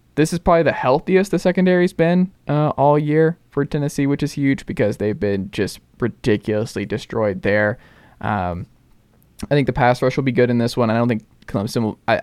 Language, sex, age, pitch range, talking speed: English, male, 20-39, 105-135 Hz, 200 wpm